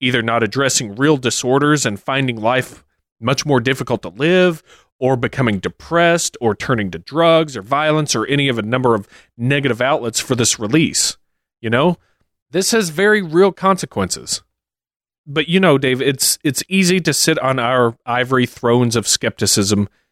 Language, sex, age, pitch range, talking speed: English, male, 30-49, 110-145 Hz, 165 wpm